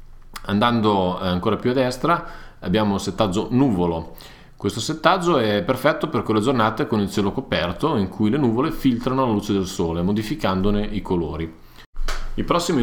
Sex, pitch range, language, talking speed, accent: male, 95-130 Hz, Italian, 160 wpm, native